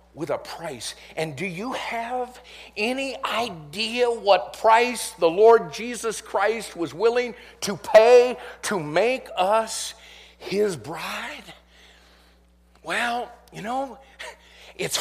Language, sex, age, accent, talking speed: English, male, 50-69, American, 110 wpm